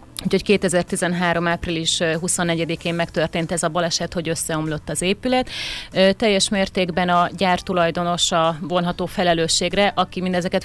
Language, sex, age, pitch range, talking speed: Hungarian, female, 30-49, 170-185 Hz, 125 wpm